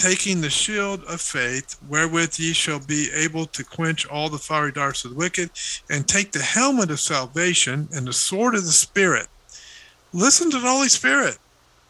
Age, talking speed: 50-69, 180 wpm